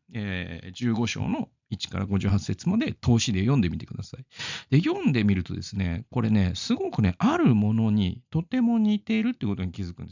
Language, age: Japanese, 40-59